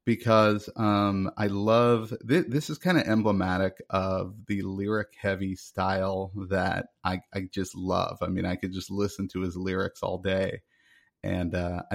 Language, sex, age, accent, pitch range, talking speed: English, male, 30-49, American, 95-100 Hz, 160 wpm